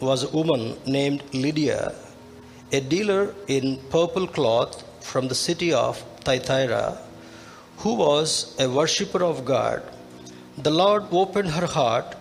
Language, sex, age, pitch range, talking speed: Telugu, male, 50-69, 130-170 Hz, 130 wpm